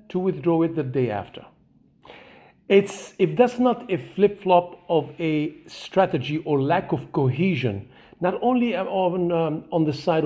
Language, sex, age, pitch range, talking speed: English, male, 50-69, 135-185 Hz, 150 wpm